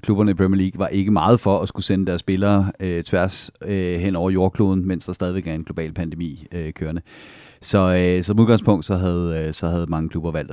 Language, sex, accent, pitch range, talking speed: Danish, male, native, 85-100 Hz, 230 wpm